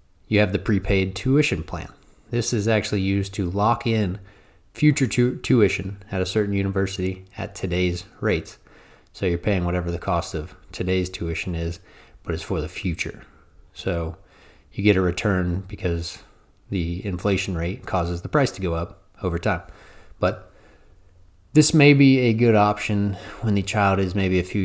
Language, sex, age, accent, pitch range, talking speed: English, male, 30-49, American, 85-105 Hz, 165 wpm